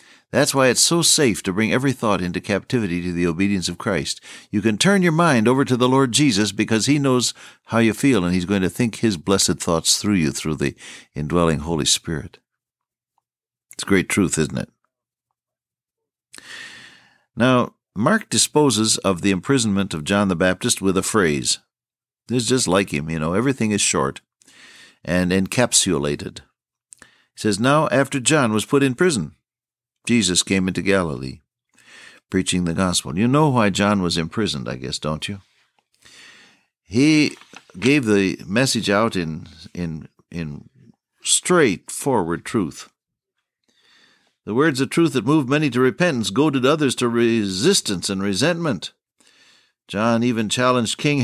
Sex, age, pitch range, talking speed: male, 60-79, 90-130 Hz, 150 wpm